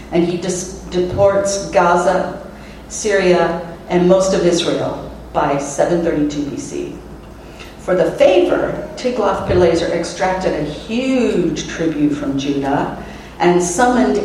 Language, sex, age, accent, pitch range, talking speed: English, female, 50-69, American, 160-195 Hz, 100 wpm